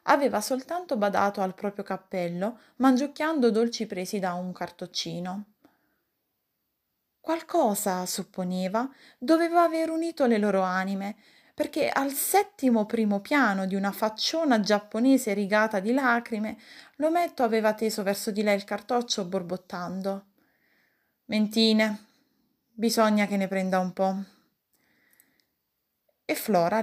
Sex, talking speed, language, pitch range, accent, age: female, 110 wpm, Italian, 190-265 Hz, native, 20-39